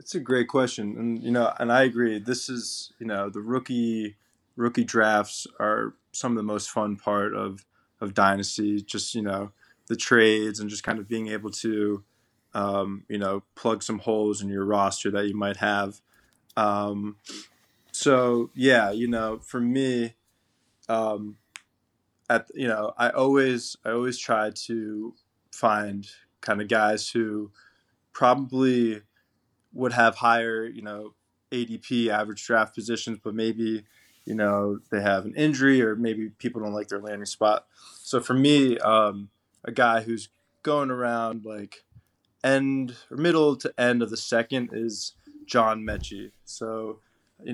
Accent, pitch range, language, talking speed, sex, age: American, 105-120 Hz, English, 155 wpm, male, 20-39